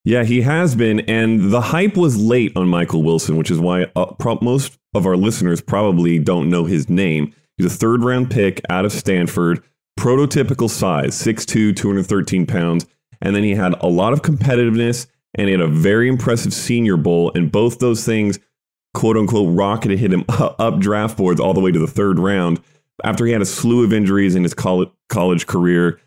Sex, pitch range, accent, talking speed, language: male, 90-125 Hz, American, 200 wpm, English